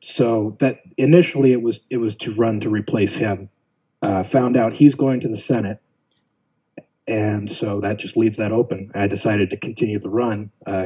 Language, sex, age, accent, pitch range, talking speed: English, male, 30-49, American, 100-125 Hz, 190 wpm